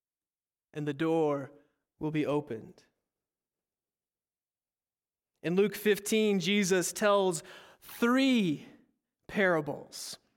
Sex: male